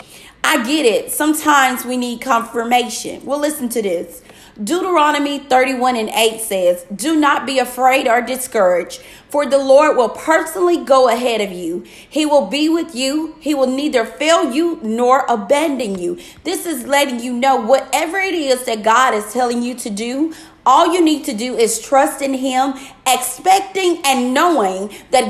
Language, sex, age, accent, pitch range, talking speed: English, female, 30-49, American, 230-300 Hz, 170 wpm